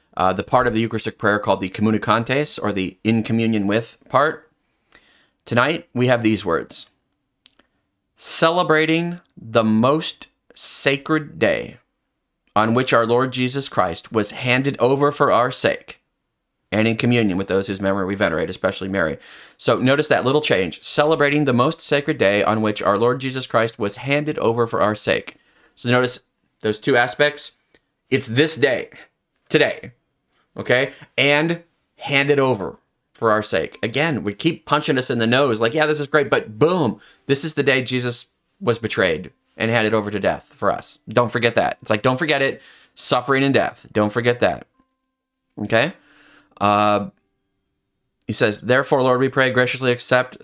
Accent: American